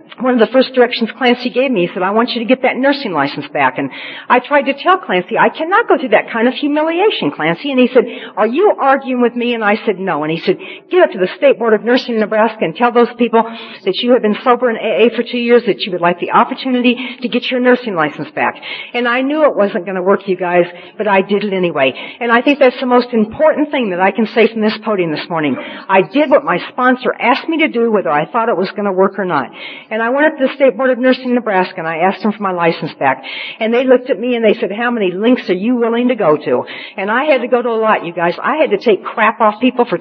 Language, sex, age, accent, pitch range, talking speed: English, female, 50-69, American, 200-255 Hz, 285 wpm